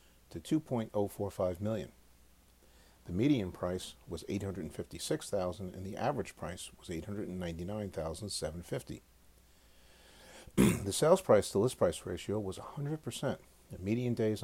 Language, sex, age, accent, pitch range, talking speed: English, male, 50-69, American, 80-110 Hz, 110 wpm